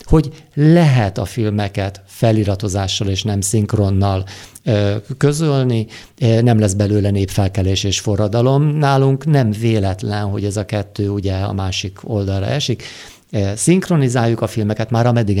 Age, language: 50-69, Hungarian